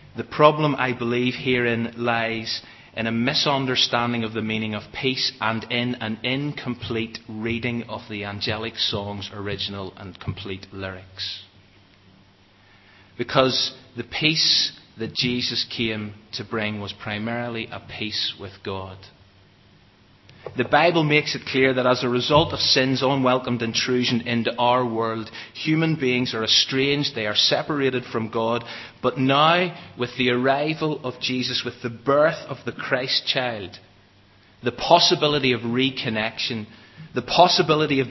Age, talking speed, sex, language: 30-49, 135 wpm, male, English